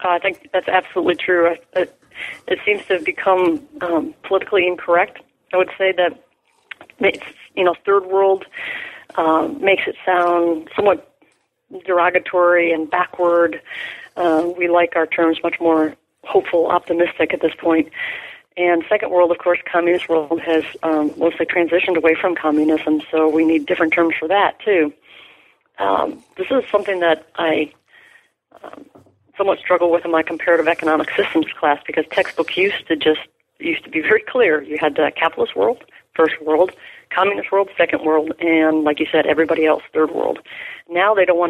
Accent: American